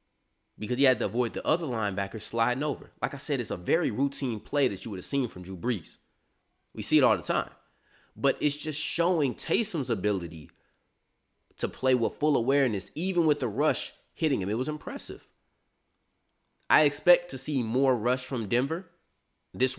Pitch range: 95-140 Hz